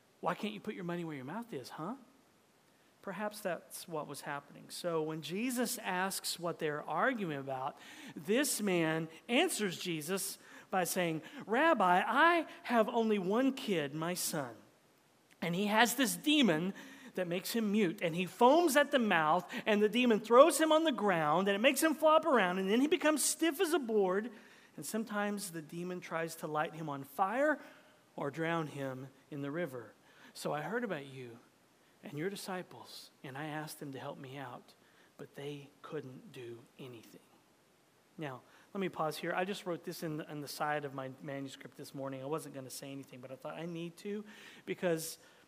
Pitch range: 150-220 Hz